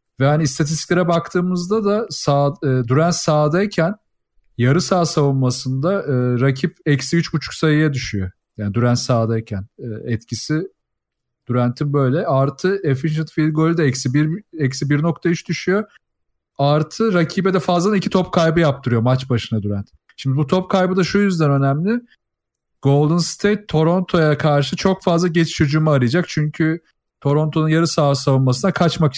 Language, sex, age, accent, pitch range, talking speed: Turkish, male, 40-59, native, 125-175 Hz, 135 wpm